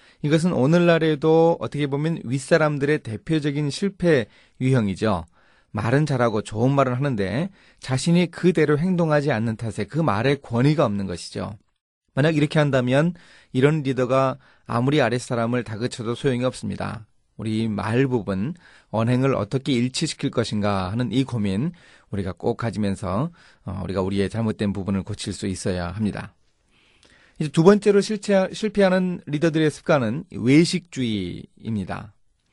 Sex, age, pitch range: male, 30-49, 110-155 Hz